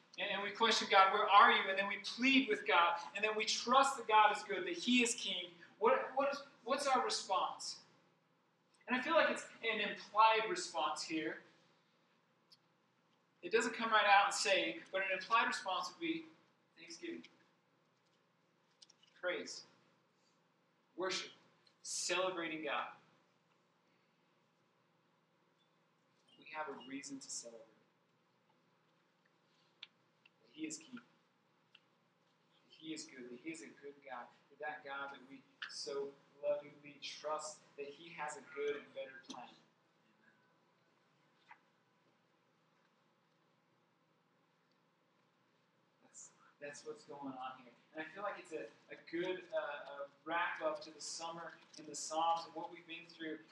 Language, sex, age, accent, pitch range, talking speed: English, male, 40-59, American, 155-230 Hz, 130 wpm